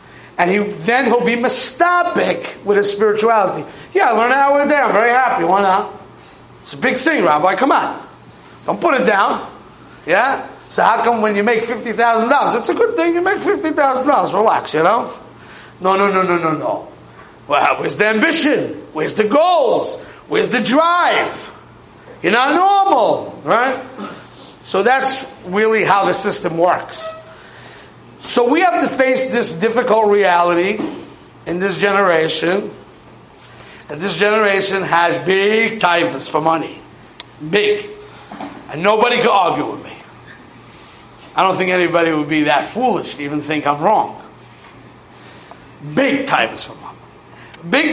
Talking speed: 150 wpm